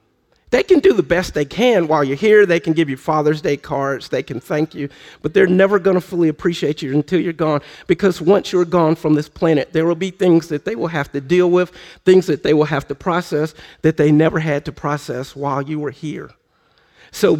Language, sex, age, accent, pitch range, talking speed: English, male, 50-69, American, 155-195 Hz, 235 wpm